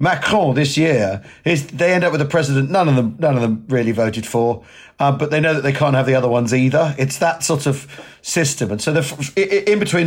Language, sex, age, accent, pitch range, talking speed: English, male, 40-59, British, 130-160 Hz, 220 wpm